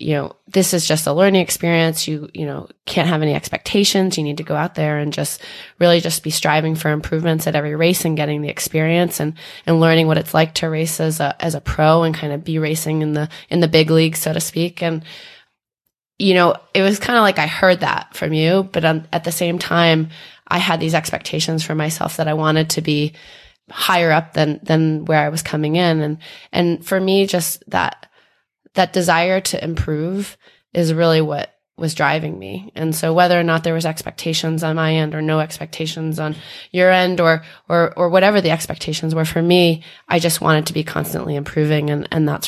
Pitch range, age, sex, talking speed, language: 155-175 Hz, 20-39, female, 220 wpm, English